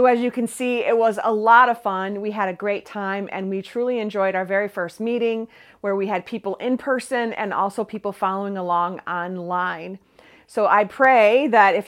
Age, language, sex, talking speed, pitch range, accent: 40-59, English, female, 205 wpm, 185-230 Hz, American